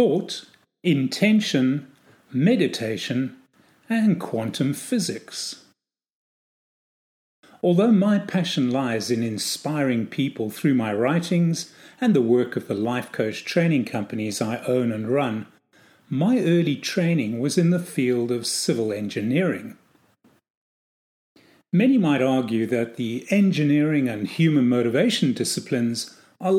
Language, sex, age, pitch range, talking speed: English, male, 40-59, 120-175 Hz, 115 wpm